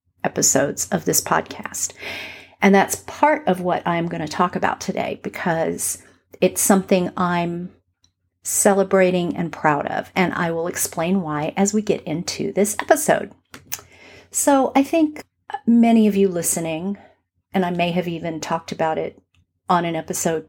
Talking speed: 150 wpm